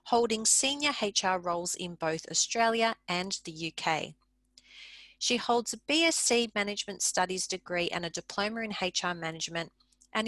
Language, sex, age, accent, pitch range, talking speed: English, female, 40-59, Australian, 180-240 Hz, 140 wpm